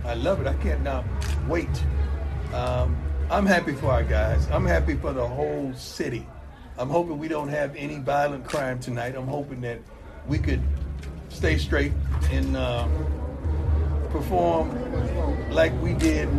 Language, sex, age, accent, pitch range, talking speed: English, male, 50-69, American, 70-80 Hz, 150 wpm